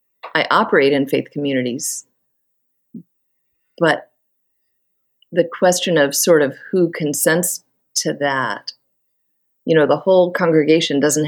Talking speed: 110 wpm